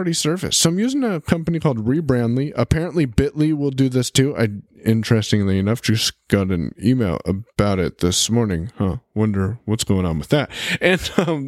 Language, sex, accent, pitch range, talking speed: English, male, American, 110-155 Hz, 185 wpm